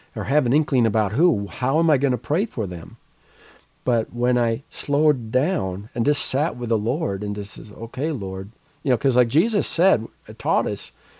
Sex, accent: male, American